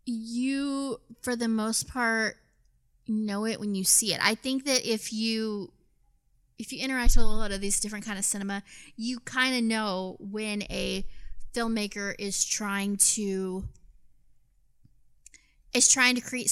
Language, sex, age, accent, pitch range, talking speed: English, female, 20-39, American, 200-245 Hz, 155 wpm